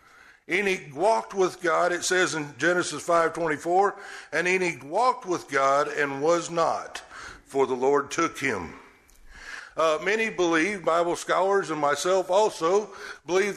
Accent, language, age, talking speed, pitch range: American, English, 60-79, 135 wpm, 135-195 Hz